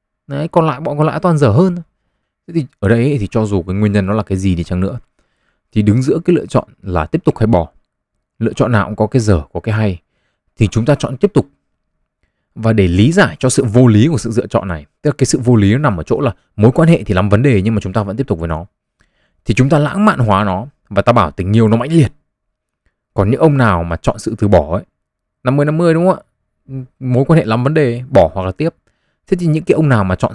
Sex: male